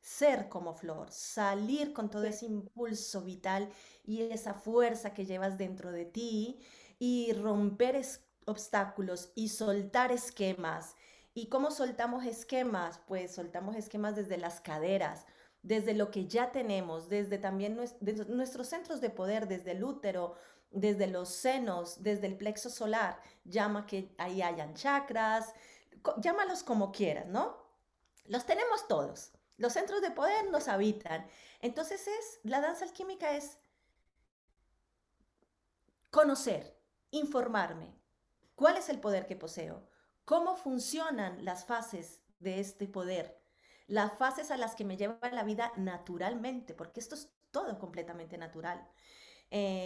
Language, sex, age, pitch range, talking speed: English, female, 30-49, 190-250 Hz, 135 wpm